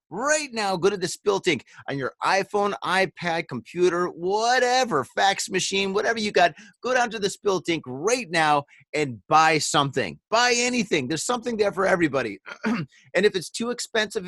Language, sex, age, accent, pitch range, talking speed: English, male, 30-49, American, 155-210 Hz, 165 wpm